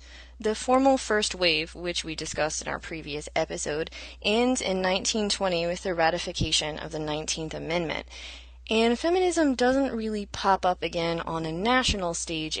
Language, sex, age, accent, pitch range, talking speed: English, female, 20-39, American, 155-195 Hz, 150 wpm